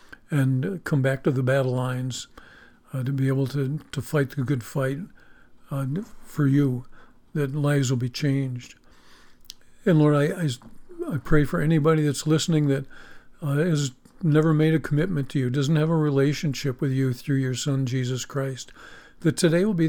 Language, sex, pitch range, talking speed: English, male, 130-150 Hz, 180 wpm